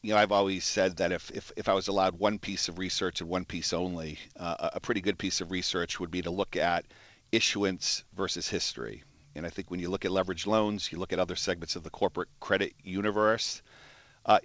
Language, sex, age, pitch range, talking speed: English, male, 50-69, 85-105 Hz, 230 wpm